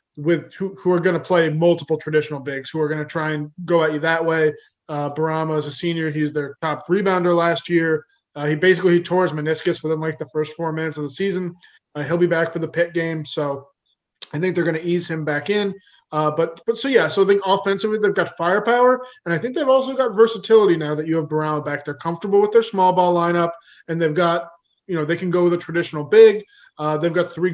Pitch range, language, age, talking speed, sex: 155-180 Hz, English, 20-39, 250 wpm, male